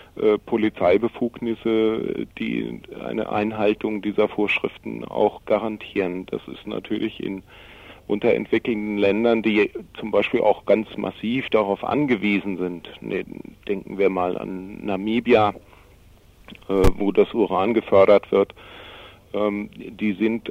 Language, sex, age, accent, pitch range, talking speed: German, male, 50-69, German, 100-110 Hz, 100 wpm